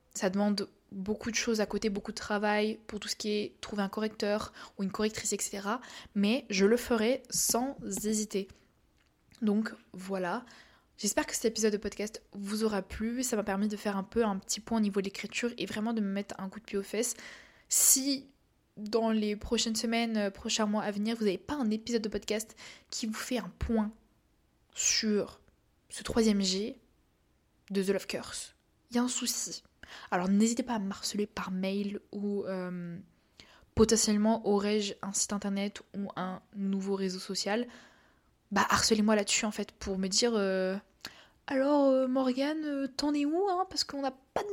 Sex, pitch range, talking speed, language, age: female, 200-230 Hz, 190 wpm, French, 20-39